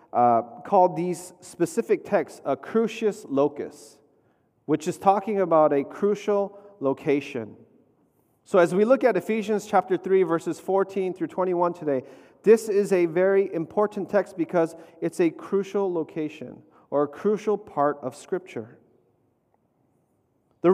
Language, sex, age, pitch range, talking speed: English, male, 30-49, 140-195 Hz, 135 wpm